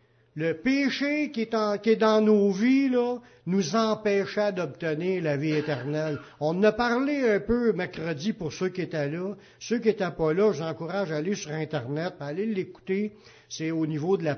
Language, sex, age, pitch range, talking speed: French, male, 60-79, 160-220 Hz, 205 wpm